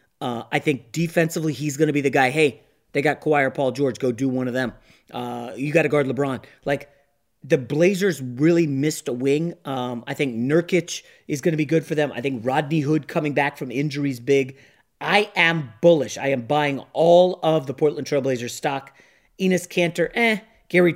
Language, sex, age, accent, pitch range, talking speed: English, male, 30-49, American, 130-165 Hz, 205 wpm